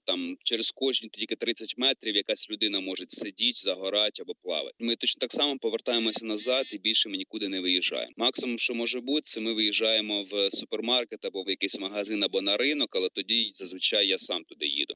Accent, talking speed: native, 195 wpm